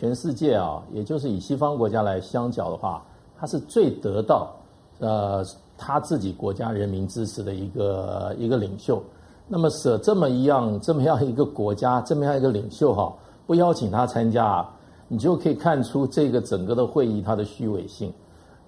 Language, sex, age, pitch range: Chinese, male, 50-69, 100-130 Hz